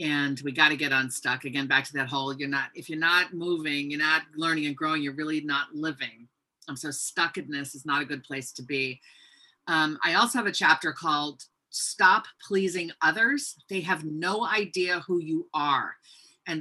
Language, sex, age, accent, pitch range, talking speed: English, female, 40-59, American, 150-195 Hz, 200 wpm